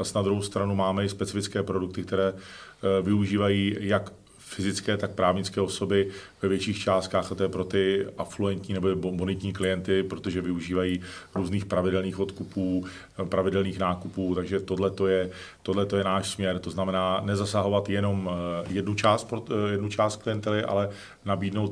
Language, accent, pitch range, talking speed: Czech, native, 90-100 Hz, 140 wpm